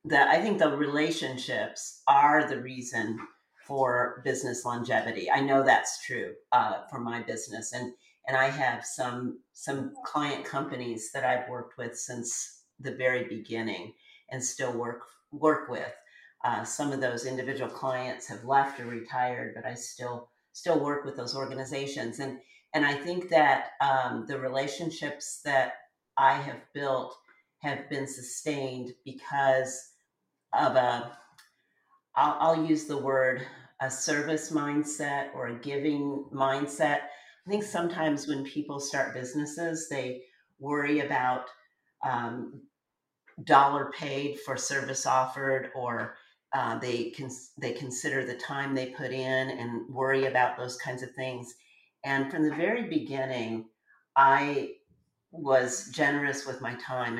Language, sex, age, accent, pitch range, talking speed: English, female, 50-69, American, 125-145 Hz, 140 wpm